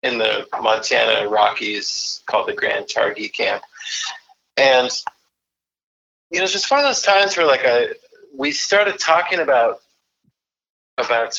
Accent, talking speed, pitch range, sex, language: American, 140 wpm, 115-190 Hz, male, English